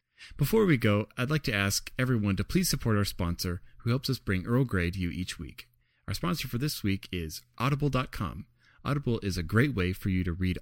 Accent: American